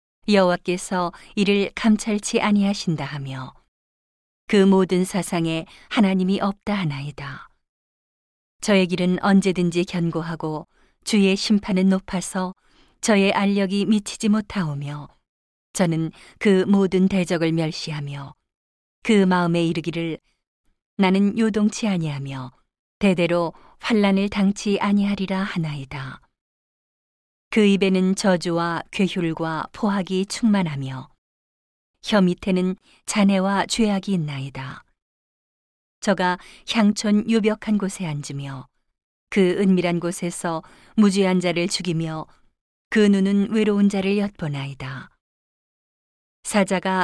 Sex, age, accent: female, 40-59, native